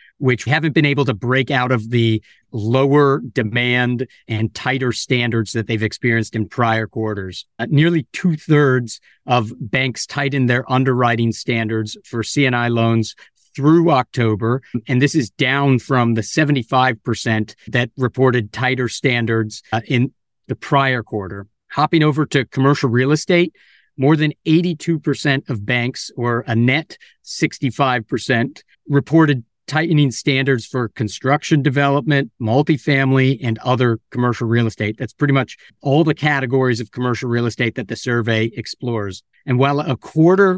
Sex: male